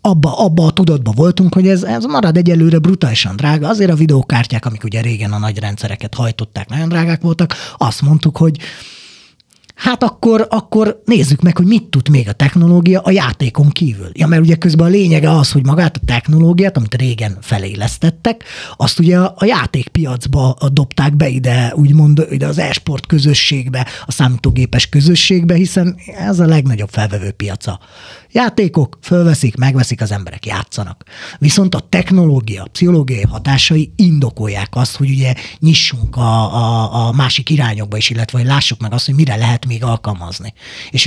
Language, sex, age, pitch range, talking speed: Hungarian, male, 30-49, 115-165 Hz, 160 wpm